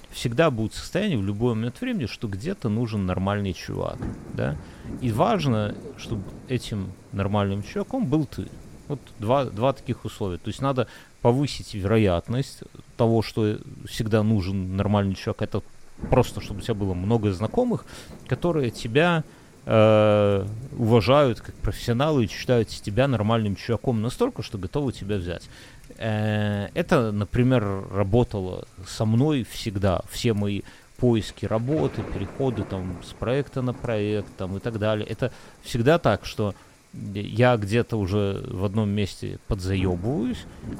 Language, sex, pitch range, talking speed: Russian, male, 100-125 Hz, 135 wpm